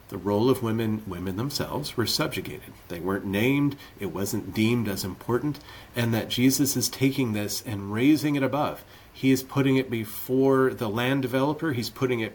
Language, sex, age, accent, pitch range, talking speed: English, male, 40-59, American, 105-130 Hz, 180 wpm